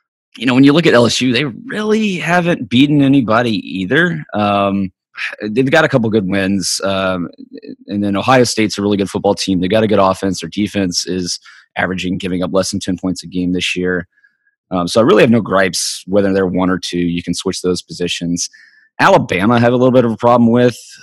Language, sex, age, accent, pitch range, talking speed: English, male, 30-49, American, 90-120 Hz, 215 wpm